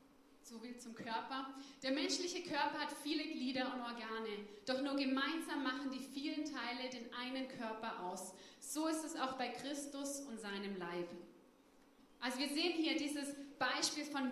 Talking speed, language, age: 165 wpm, German, 30-49